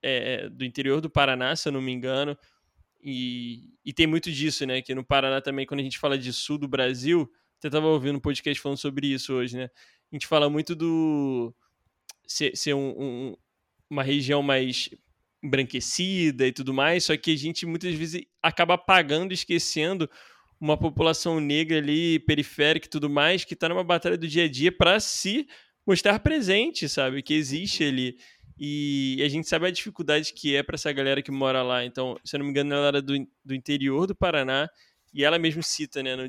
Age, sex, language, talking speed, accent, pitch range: 20-39, male, Portuguese, 200 wpm, Brazilian, 130-160 Hz